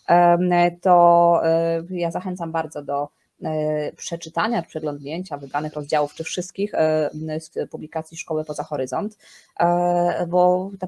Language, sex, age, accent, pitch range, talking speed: Polish, female, 20-39, native, 155-180 Hz, 100 wpm